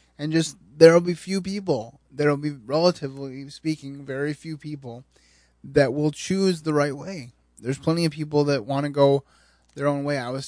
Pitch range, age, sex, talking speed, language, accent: 125-145 Hz, 20-39, male, 185 wpm, English, American